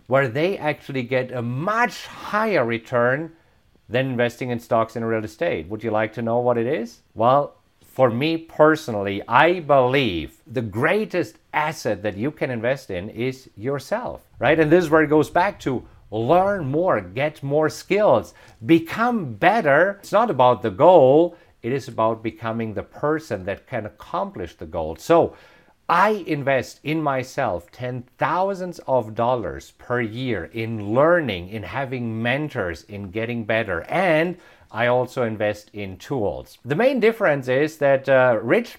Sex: male